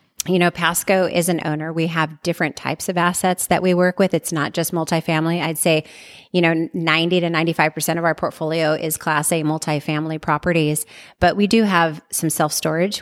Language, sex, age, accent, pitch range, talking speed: English, female, 30-49, American, 155-180 Hz, 195 wpm